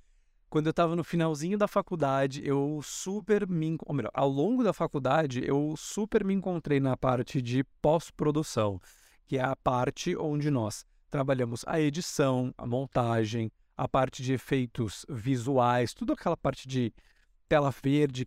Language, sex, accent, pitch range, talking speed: Portuguese, male, Brazilian, 130-160 Hz, 150 wpm